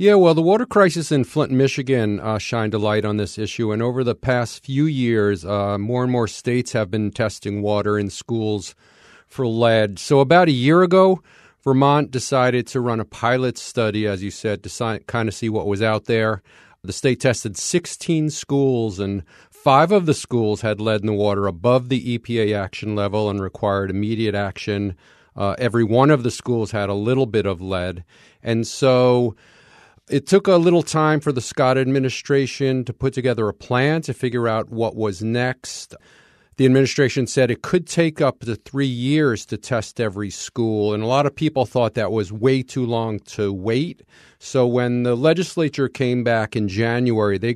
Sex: male